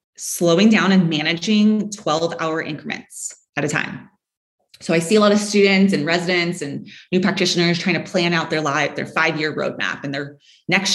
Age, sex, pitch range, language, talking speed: 20-39, female, 160-200 Hz, English, 180 wpm